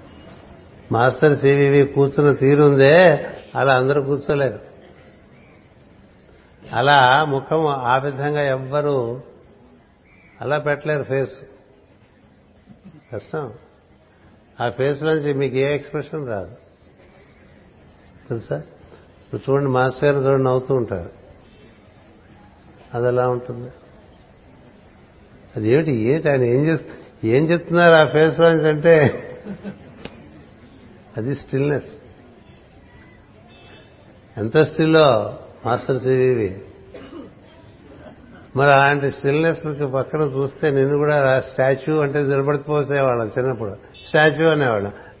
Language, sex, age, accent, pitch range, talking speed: Telugu, male, 60-79, native, 120-145 Hz, 85 wpm